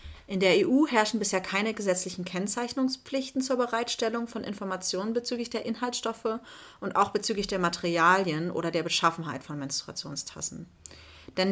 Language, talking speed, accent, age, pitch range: German, 135 wpm, German, 30-49, 170-205 Hz